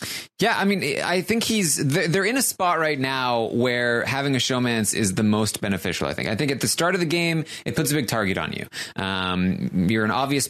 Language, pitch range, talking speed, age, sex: English, 105-155 Hz, 235 wpm, 20-39, male